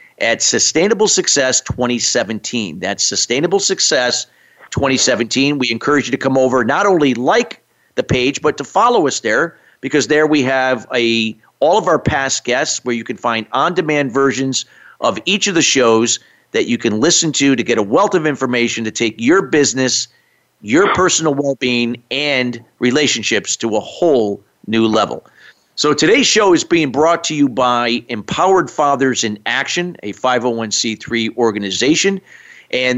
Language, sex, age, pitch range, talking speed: English, male, 50-69, 120-155 Hz, 160 wpm